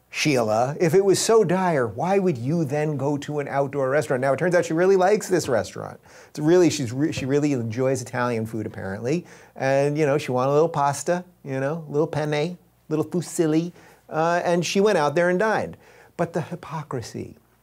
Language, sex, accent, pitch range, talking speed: English, male, American, 120-170 Hz, 195 wpm